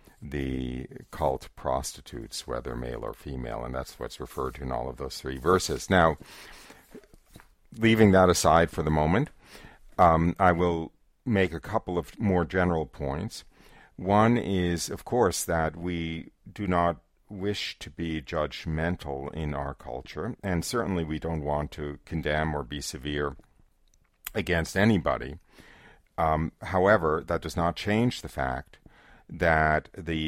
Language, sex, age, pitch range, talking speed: English, male, 50-69, 70-90 Hz, 145 wpm